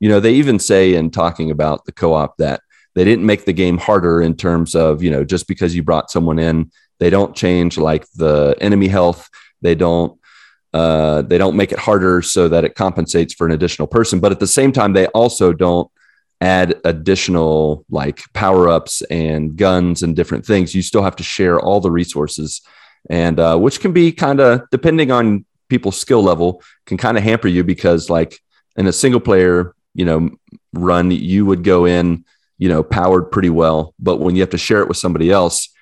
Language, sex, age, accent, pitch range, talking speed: English, male, 30-49, American, 80-100 Hz, 205 wpm